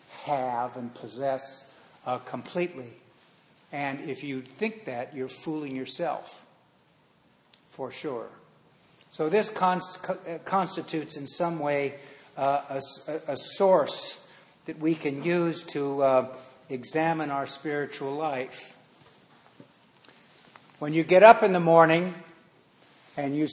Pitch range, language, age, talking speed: 140-185 Hz, English, 60-79, 110 wpm